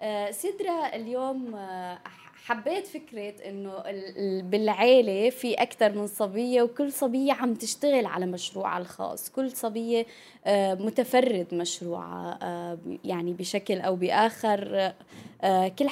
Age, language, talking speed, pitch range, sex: 20-39, Arabic, 100 wpm, 185-235 Hz, female